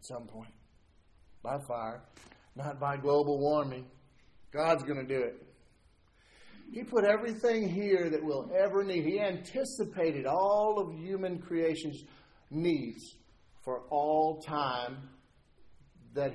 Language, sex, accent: English, male, American